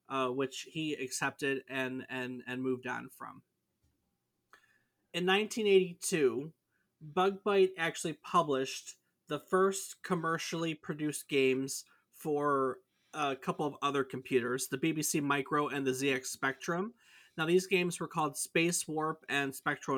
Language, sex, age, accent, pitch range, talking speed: English, male, 30-49, American, 135-170 Hz, 130 wpm